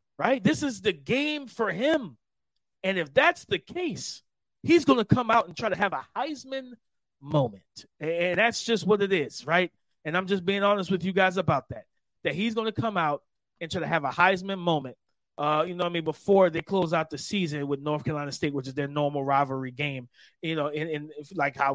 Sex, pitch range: male, 155-210 Hz